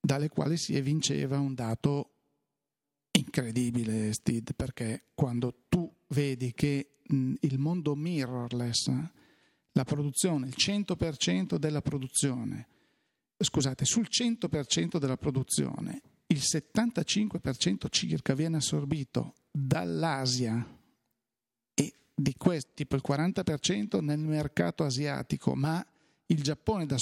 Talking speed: 105 wpm